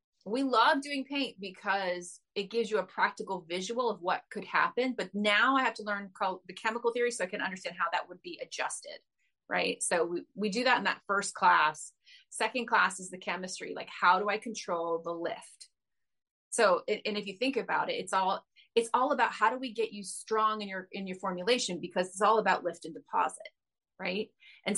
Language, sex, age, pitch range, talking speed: English, female, 30-49, 185-235 Hz, 210 wpm